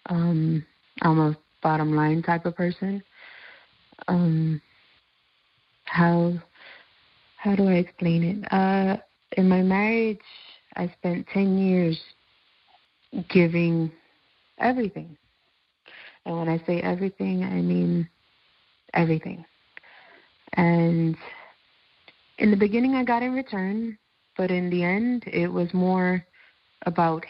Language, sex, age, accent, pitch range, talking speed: English, female, 30-49, American, 160-195 Hz, 110 wpm